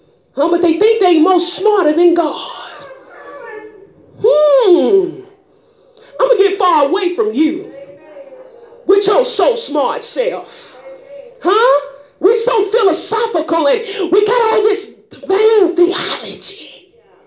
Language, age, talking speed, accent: English, 40-59, 120 wpm, American